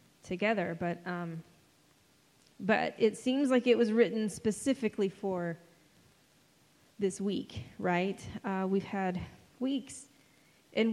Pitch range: 165-200 Hz